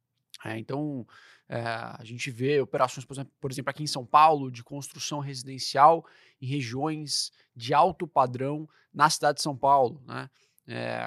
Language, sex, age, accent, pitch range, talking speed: Portuguese, male, 20-39, Brazilian, 125-155 Hz, 150 wpm